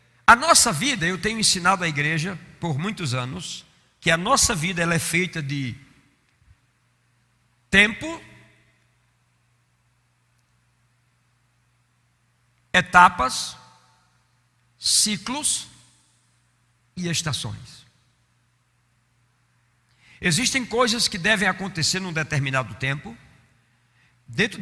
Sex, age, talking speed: male, 50-69, 80 wpm